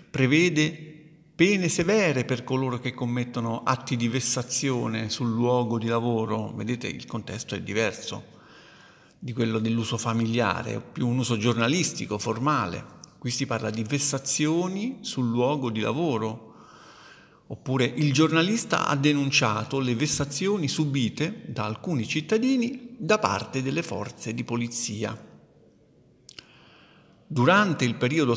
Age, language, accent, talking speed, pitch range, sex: 50-69, Italian, native, 120 wpm, 120-160 Hz, male